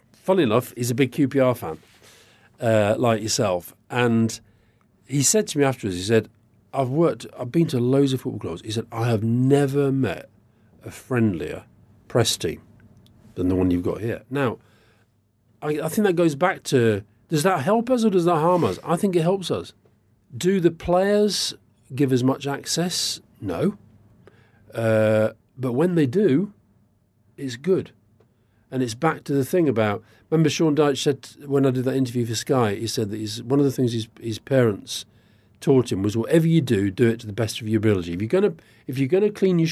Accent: British